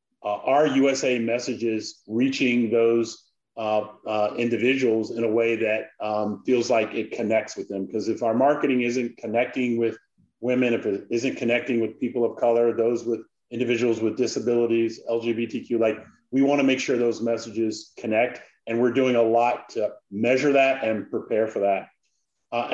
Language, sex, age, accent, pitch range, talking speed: English, male, 30-49, American, 115-125 Hz, 165 wpm